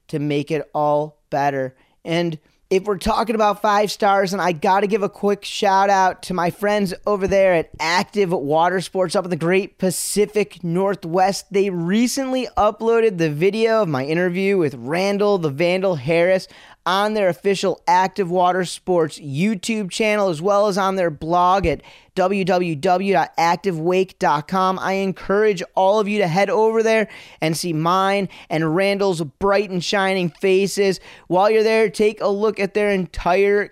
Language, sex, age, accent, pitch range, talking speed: English, male, 30-49, American, 175-205 Hz, 165 wpm